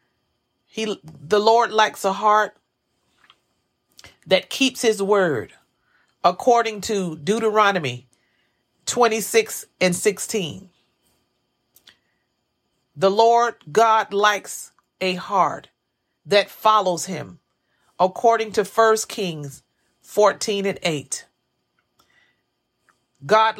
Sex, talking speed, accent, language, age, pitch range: female, 85 wpm, American, English, 40-59, 150-220 Hz